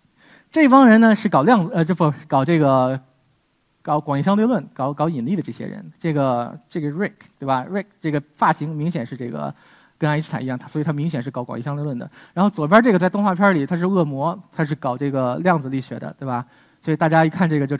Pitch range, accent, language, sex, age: 145-205 Hz, native, Chinese, male, 20-39